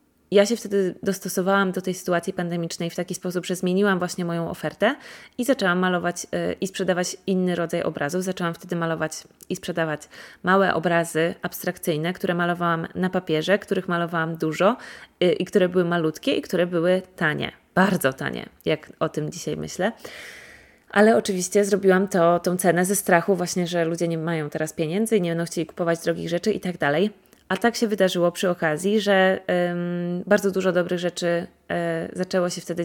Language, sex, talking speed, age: Polish, female, 175 wpm, 20-39